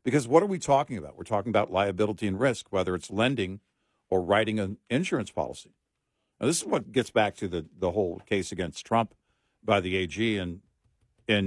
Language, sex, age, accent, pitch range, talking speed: English, male, 60-79, American, 100-150 Hz, 200 wpm